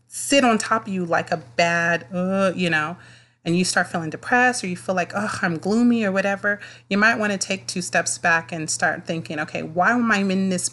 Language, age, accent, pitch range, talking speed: English, 30-49, American, 150-185 Hz, 235 wpm